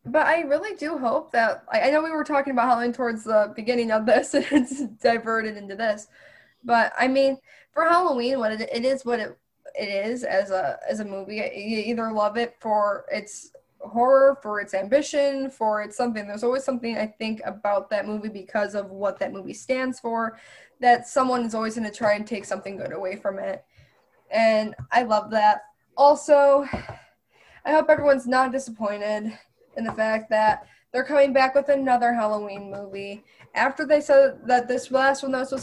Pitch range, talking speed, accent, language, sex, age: 215-275 Hz, 190 wpm, American, English, female, 10-29